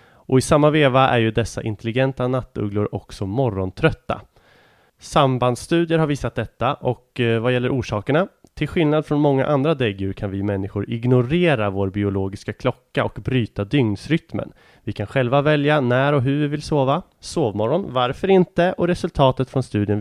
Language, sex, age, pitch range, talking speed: English, male, 30-49, 105-150 Hz, 155 wpm